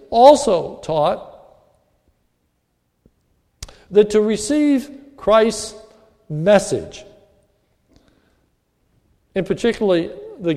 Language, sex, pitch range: English, male, 160-235 Hz